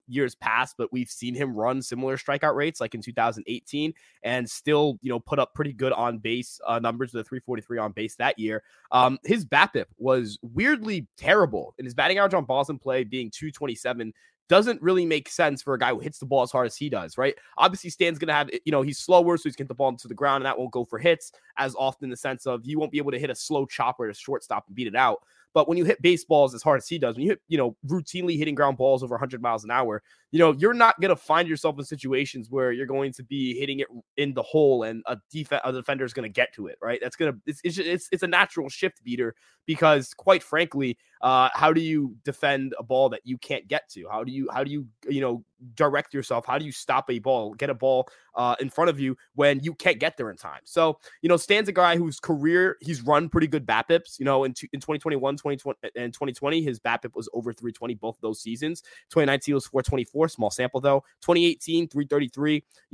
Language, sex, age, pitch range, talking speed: English, male, 20-39, 125-160 Hz, 250 wpm